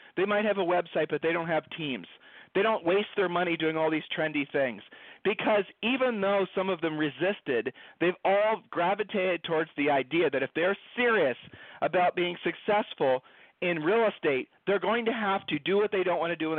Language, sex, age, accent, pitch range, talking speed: English, male, 40-59, American, 155-200 Hz, 205 wpm